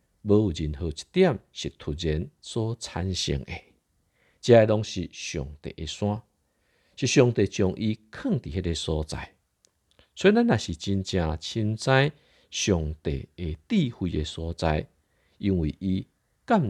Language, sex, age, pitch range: Chinese, male, 50-69, 80-110 Hz